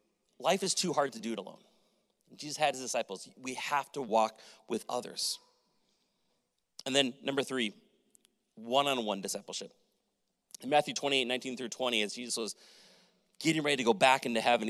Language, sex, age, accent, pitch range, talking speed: English, male, 30-49, American, 115-150 Hz, 165 wpm